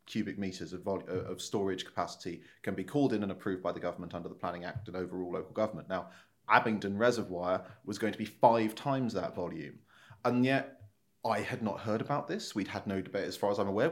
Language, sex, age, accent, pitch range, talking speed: English, male, 30-49, British, 100-135 Hz, 225 wpm